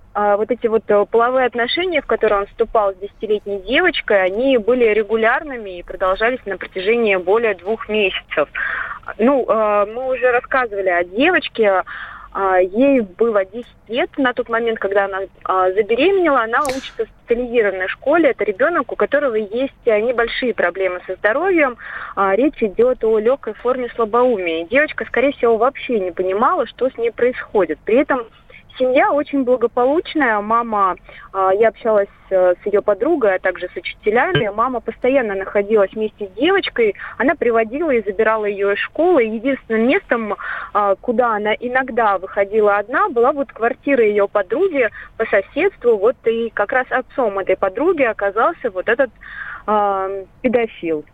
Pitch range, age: 205-270 Hz, 20-39